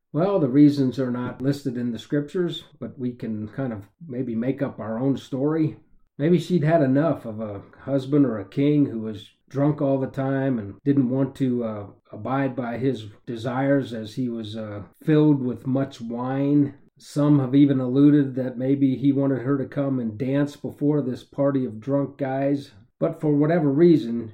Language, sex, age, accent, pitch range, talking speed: English, male, 40-59, American, 125-150 Hz, 185 wpm